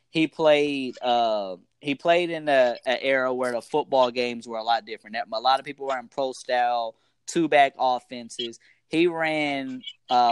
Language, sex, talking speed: English, male, 165 wpm